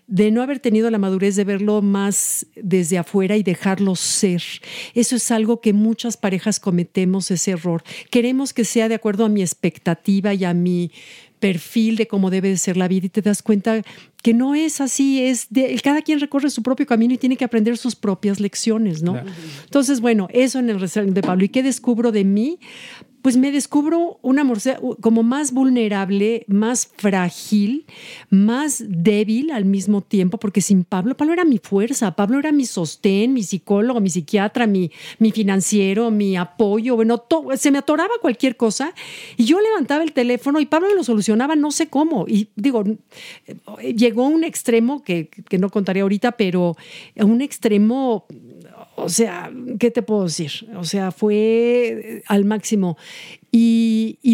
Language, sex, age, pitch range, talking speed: Spanish, female, 50-69, 195-250 Hz, 180 wpm